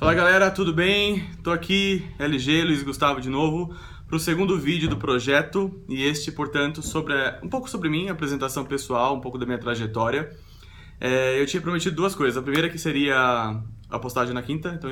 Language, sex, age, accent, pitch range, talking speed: Portuguese, male, 20-39, Brazilian, 120-155 Hz, 190 wpm